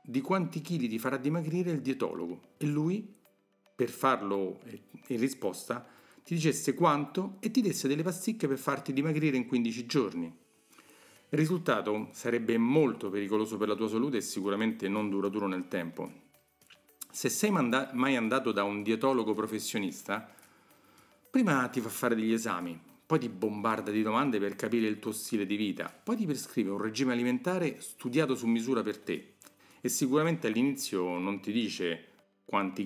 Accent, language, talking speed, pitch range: native, Italian, 160 wpm, 105-145 Hz